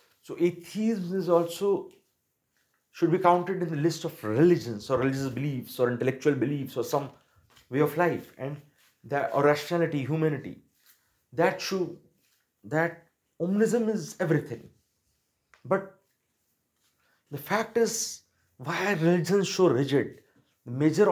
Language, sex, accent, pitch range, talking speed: Hindi, male, native, 130-175 Hz, 125 wpm